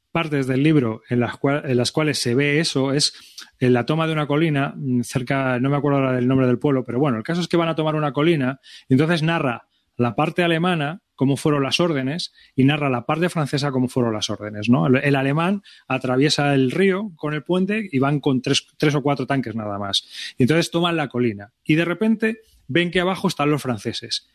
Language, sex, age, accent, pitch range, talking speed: Spanish, male, 30-49, Spanish, 135-175 Hz, 225 wpm